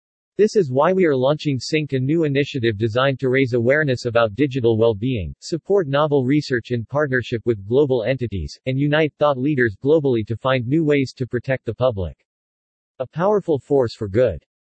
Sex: male